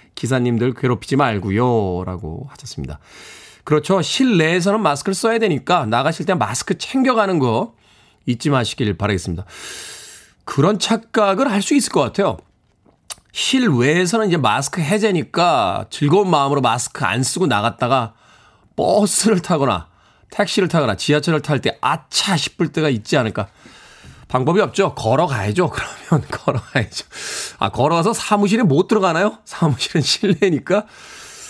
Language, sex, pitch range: Korean, male, 120-195 Hz